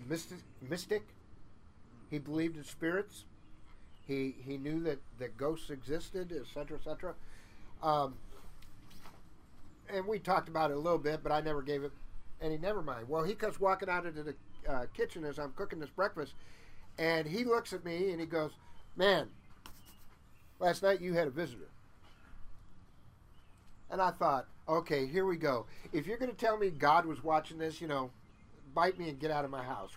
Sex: male